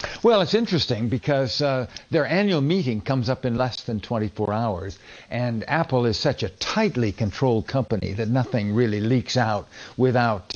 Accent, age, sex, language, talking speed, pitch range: American, 60-79, male, English, 165 wpm, 120-160 Hz